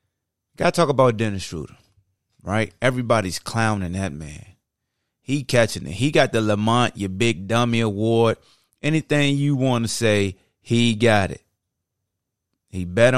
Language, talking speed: English, 140 wpm